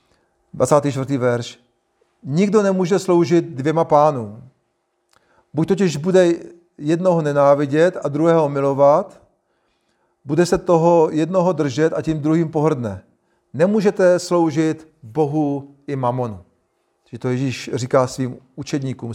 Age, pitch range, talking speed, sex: 40-59, 140-175 Hz, 110 wpm, male